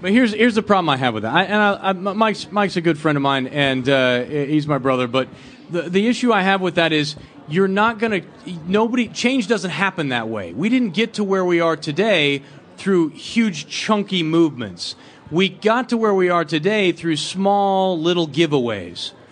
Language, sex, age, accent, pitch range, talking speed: English, male, 30-49, American, 145-210 Hz, 210 wpm